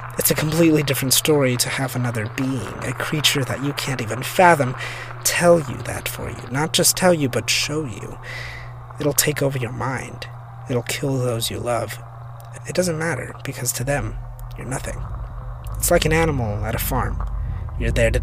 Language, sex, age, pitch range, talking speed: English, male, 30-49, 105-135 Hz, 185 wpm